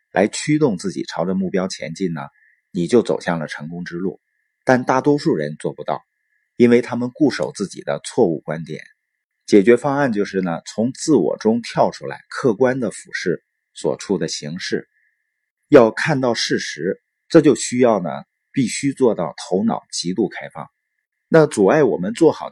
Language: Chinese